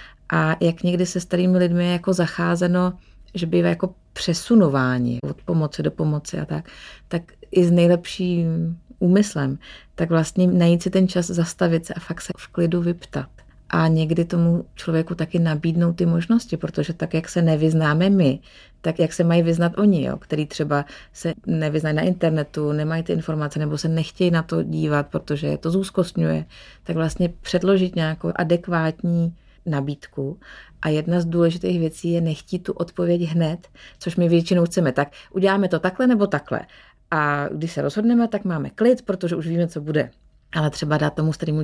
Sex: female